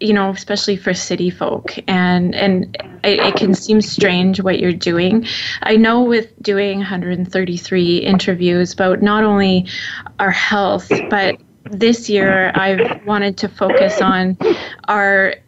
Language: English